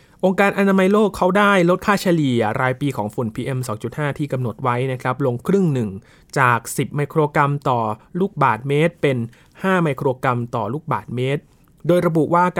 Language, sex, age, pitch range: Thai, male, 20-39, 125-160 Hz